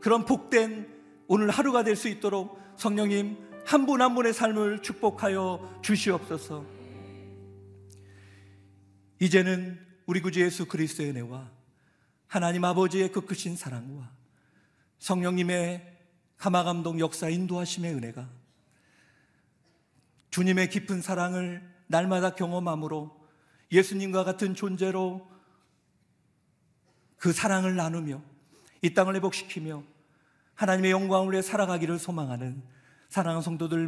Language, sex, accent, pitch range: Korean, male, native, 150-190 Hz